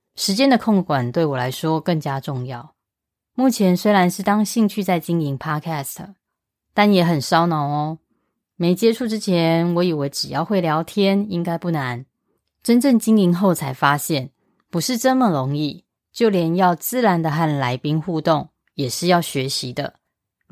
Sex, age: female, 20-39